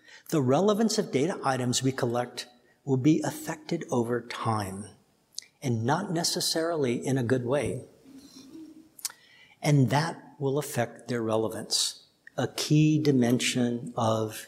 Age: 60-79